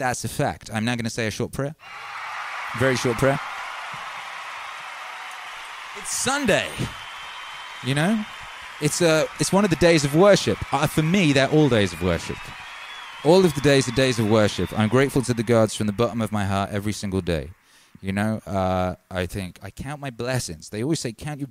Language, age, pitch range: English, 30-49, 95-125 Hz